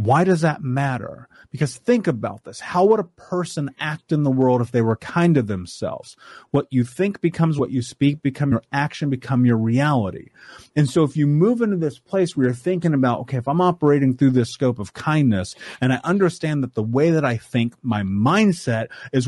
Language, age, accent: English, 30-49, American